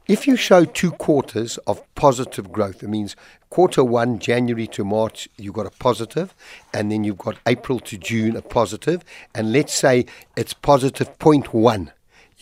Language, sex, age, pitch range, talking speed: English, male, 60-79, 115-145 Hz, 165 wpm